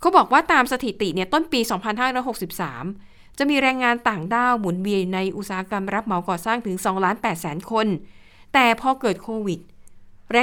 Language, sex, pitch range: Thai, female, 190-240 Hz